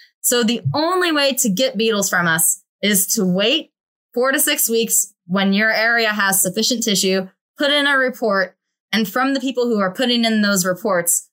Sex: female